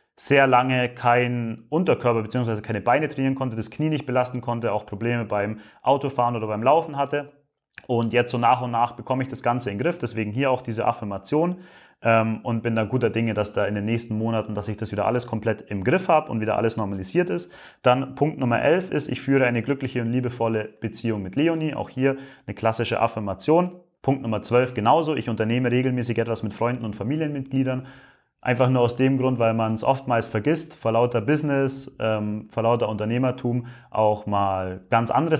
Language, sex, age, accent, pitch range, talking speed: English, male, 30-49, German, 110-135 Hz, 200 wpm